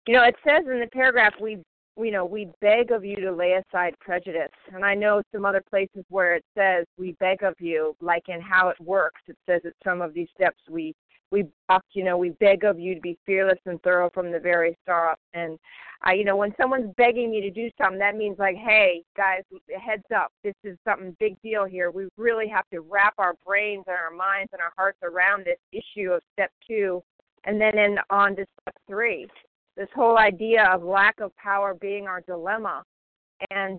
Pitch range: 185-215 Hz